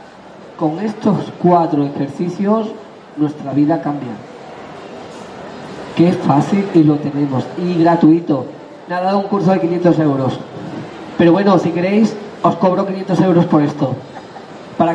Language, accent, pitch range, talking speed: Spanish, Spanish, 155-190 Hz, 135 wpm